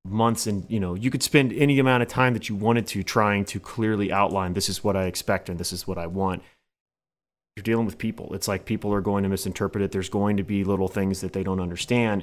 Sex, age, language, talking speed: male, 30-49, English, 255 wpm